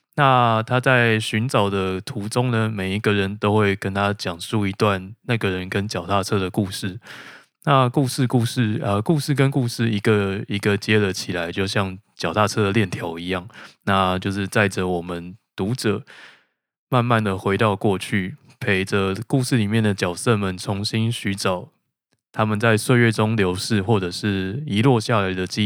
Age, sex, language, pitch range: 20-39, male, Chinese, 100-120 Hz